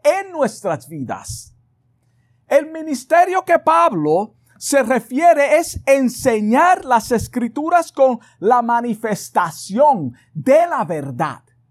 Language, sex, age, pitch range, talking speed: Spanish, male, 50-69, 200-305 Hz, 95 wpm